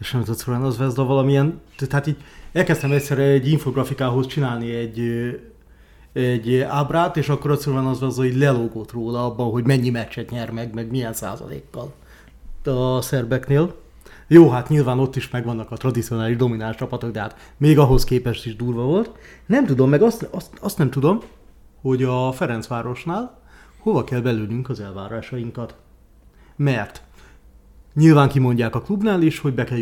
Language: Hungarian